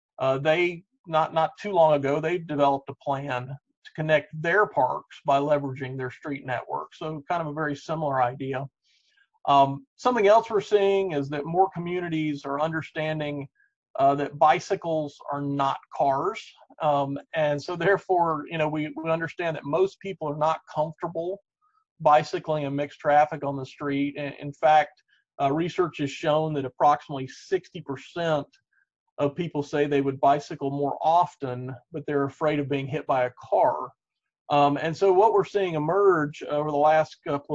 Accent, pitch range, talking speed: American, 140-165 Hz, 170 wpm